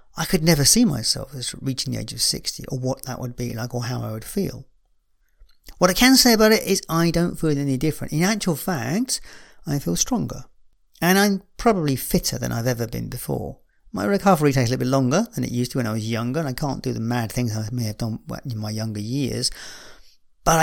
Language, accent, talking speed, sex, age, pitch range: English, British, 235 wpm, male, 40-59, 120-170 Hz